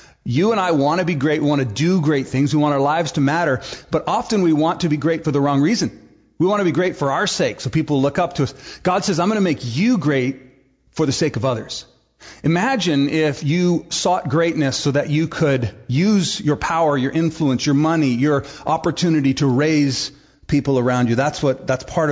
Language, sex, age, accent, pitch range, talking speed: English, male, 40-59, American, 135-175 Hz, 230 wpm